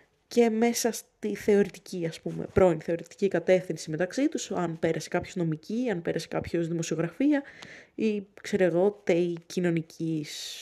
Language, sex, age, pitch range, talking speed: Greek, female, 20-39, 170-235 Hz, 135 wpm